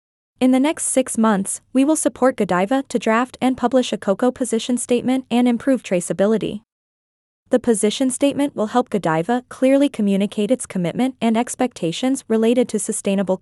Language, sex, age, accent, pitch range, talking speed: English, female, 20-39, American, 200-260 Hz, 155 wpm